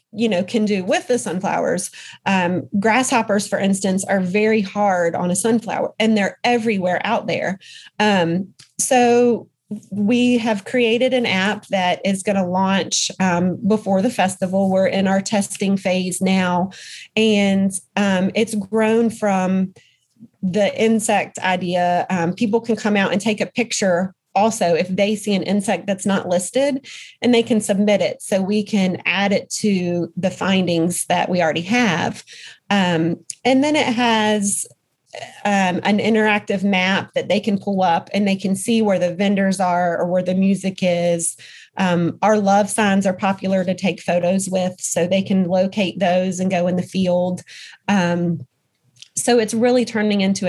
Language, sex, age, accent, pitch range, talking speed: English, female, 30-49, American, 185-215 Hz, 165 wpm